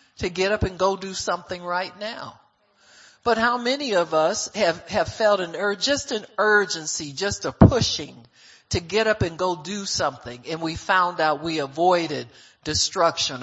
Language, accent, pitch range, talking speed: English, American, 155-215 Hz, 175 wpm